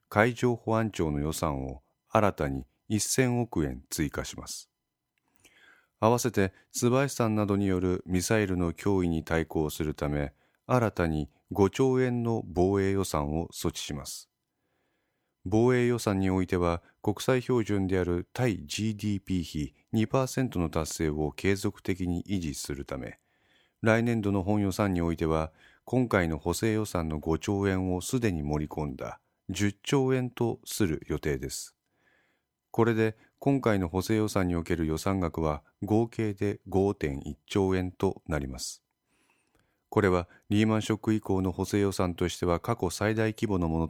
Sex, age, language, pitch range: male, 40-59, Japanese, 80-110 Hz